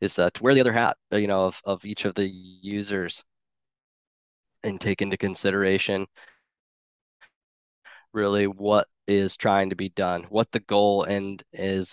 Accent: American